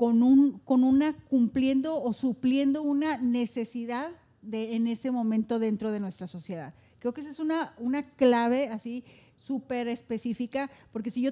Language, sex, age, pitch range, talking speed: Spanish, female, 40-59, 220-265 Hz, 155 wpm